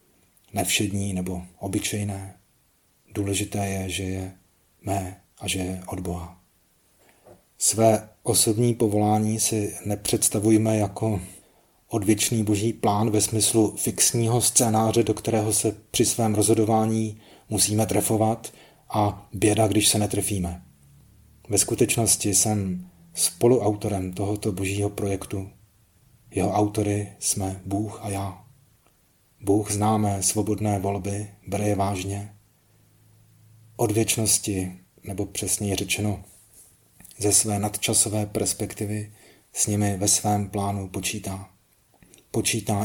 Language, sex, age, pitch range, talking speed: Czech, male, 30-49, 95-110 Hz, 105 wpm